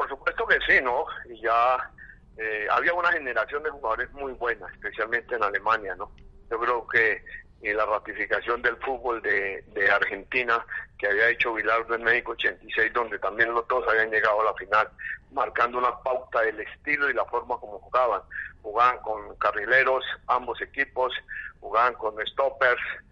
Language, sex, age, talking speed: Spanish, male, 60-79, 165 wpm